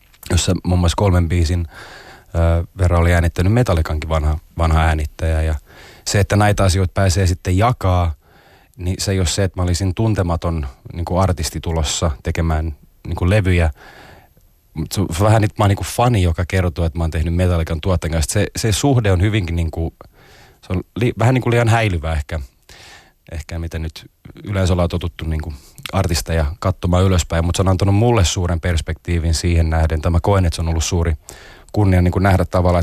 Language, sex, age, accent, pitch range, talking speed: Finnish, male, 30-49, native, 80-95 Hz, 175 wpm